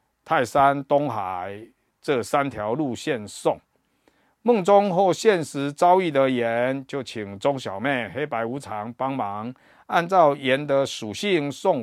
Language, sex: Chinese, male